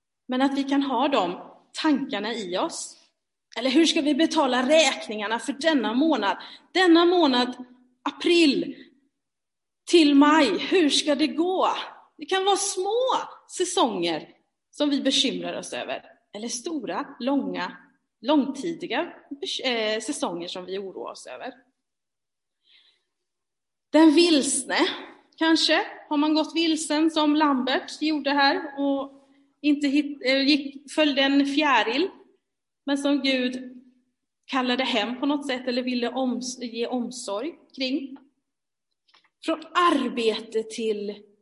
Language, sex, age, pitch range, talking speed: Swedish, female, 30-49, 255-330 Hz, 120 wpm